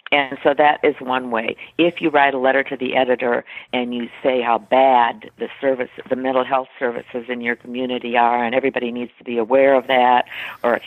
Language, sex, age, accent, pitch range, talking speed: English, female, 50-69, American, 125-140 Hz, 215 wpm